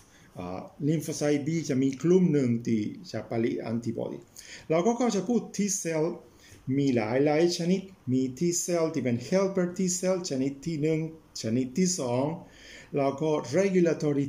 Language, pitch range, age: Thai, 130-175 Hz, 50-69